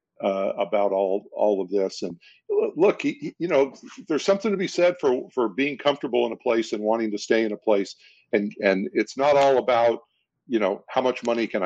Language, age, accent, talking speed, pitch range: English, 50-69, American, 220 wpm, 105-130 Hz